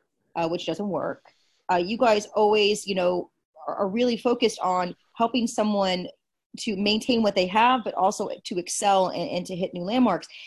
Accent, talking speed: American, 185 wpm